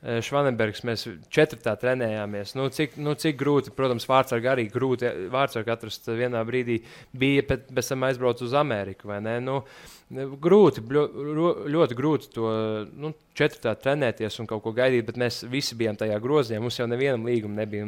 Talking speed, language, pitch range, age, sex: 170 wpm, English, 115-140 Hz, 20-39, male